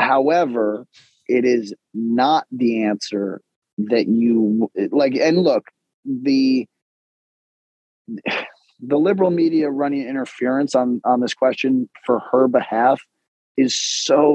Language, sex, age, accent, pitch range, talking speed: English, male, 30-49, American, 110-145 Hz, 110 wpm